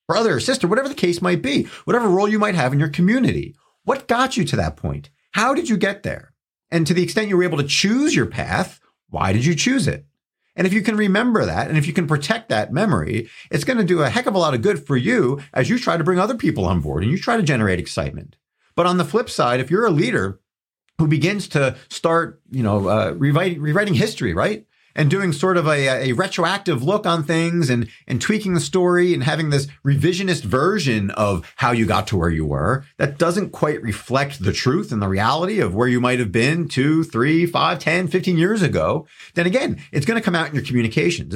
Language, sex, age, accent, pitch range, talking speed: English, male, 40-59, American, 120-180 Hz, 240 wpm